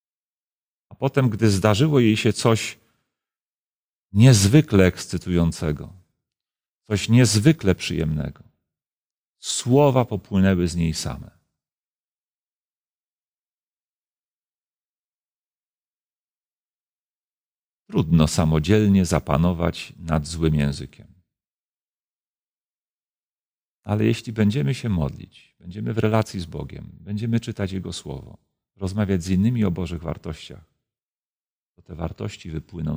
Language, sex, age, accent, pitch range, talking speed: Polish, male, 40-59, native, 85-115 Hz, 85 wpm